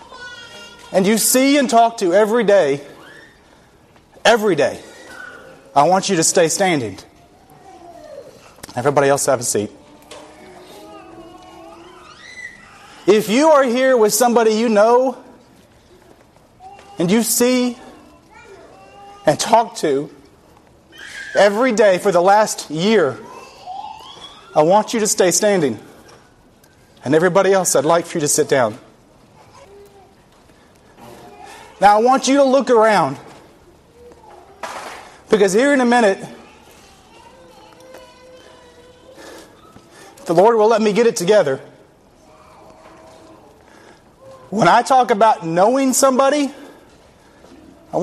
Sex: male